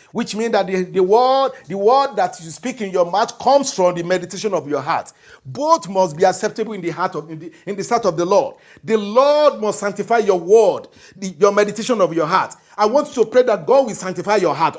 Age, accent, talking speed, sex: 50-69, Nigerian, 240 wpm, male